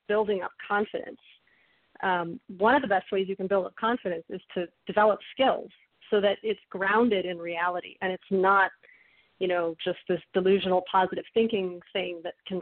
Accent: American